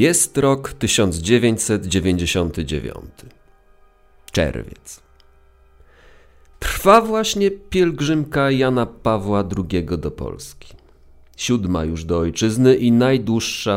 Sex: male